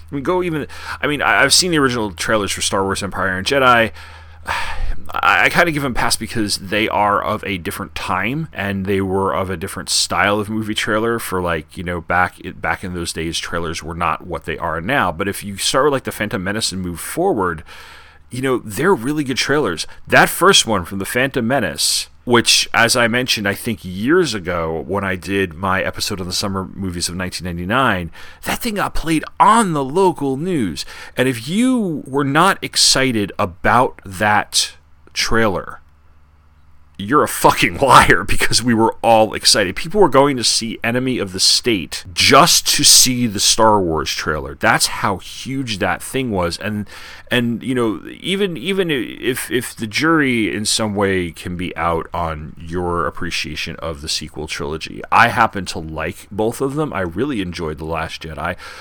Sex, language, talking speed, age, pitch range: male, English, 190 wpm, 30-49, 85-120 Hz